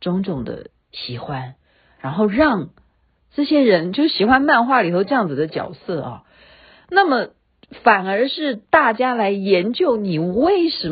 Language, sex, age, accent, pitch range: Chinese, female, 50-69, native, 160-250 Hz